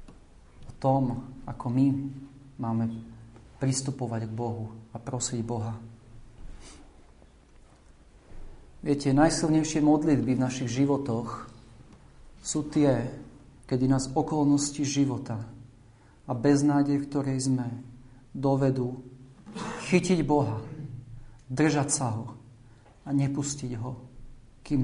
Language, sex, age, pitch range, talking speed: Slovak, male, 40-59, 120-140 Hz, 85 wpm